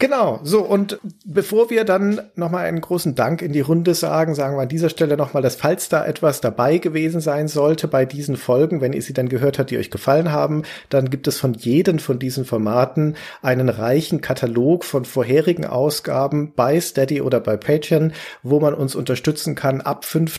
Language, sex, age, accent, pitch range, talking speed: German, male, 40-59, German, 125-155 Hz, 195 wpm